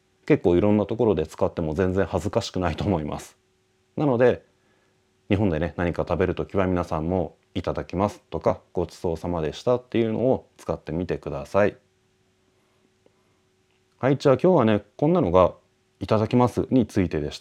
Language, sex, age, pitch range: Japanese, male, 30-49, 85-125 Hz